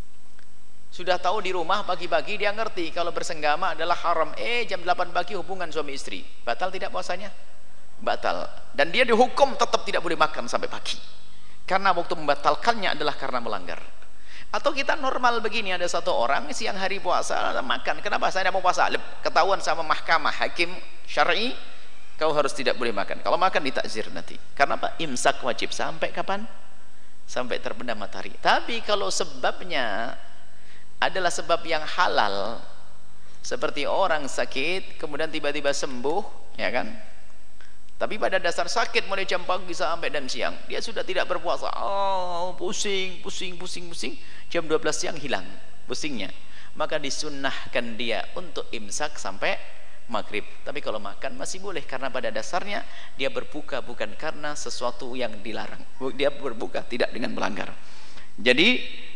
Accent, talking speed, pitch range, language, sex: native, 145 wpm, 155-195 Hz, Indonesian, male